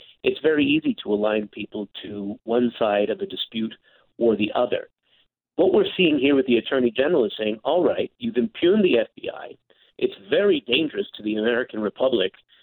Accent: American